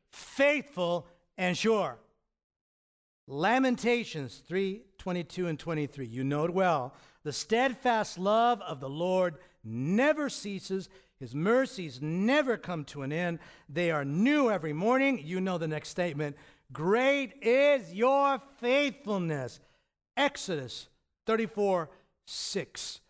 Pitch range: 155-240 Hz